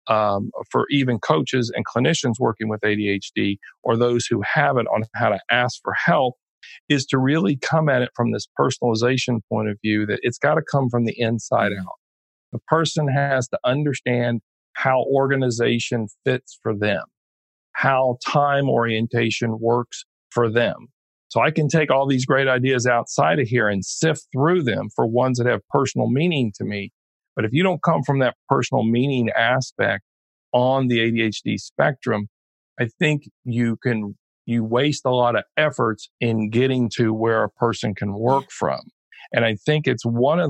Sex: male